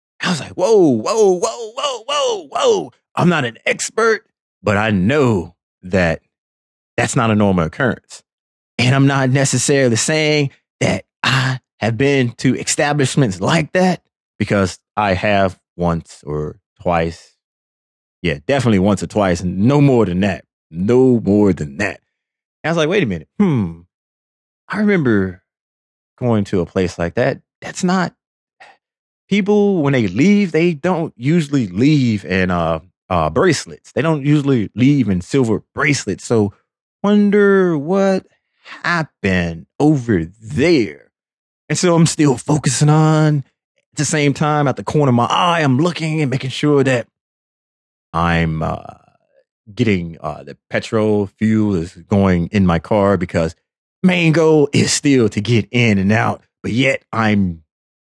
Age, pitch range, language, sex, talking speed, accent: 30-49, 95-150 Hz, English, male, 150 wpm, American